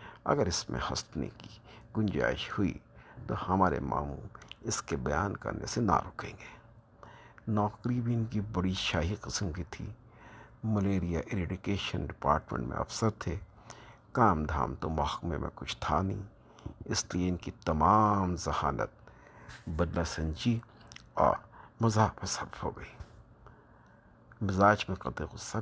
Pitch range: 85-115 Hz